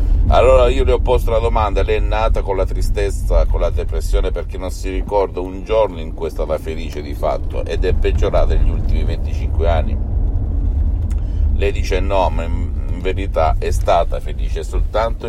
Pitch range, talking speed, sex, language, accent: 75-95 Hz, 180 wpm, male, Italian, native